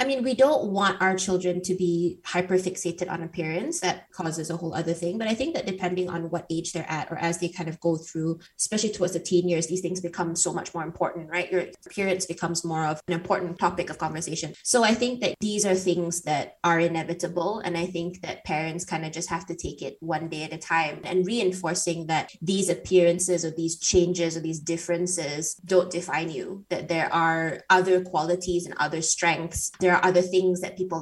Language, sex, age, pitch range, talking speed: English, female, 20-39, 170-190 Hz, 220 wpm